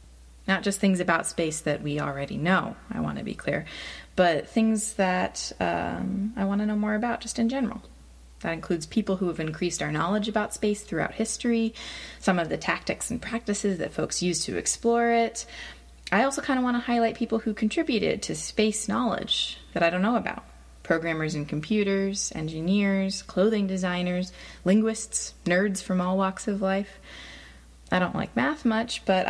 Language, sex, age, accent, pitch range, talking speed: English, female, 20-39, American, 170-225 Hz, 180 wpm